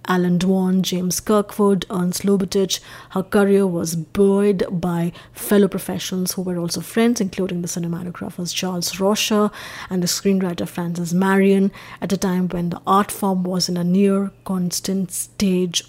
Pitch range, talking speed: 175-200 Hz, 150 wpm